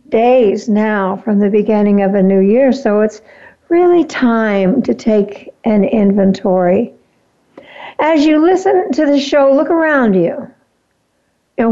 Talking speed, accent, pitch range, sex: 140 wpm, American, 200-255 Hz, female